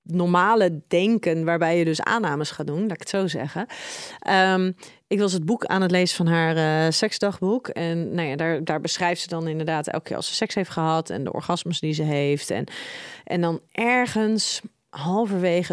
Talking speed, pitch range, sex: 185 wpm, 170-225 Hz, female